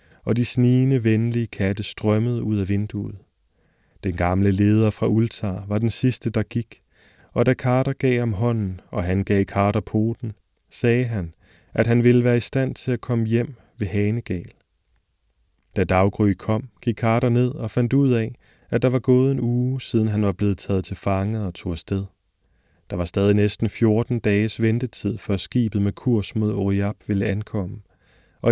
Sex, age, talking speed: male, 30-49, 185 wpm